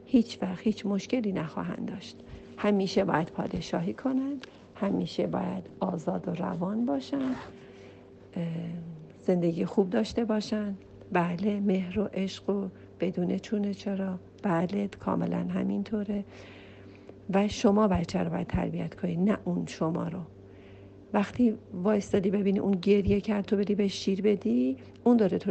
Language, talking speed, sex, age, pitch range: Persian, 130 wpm, female, 50-69, 180-215 Hz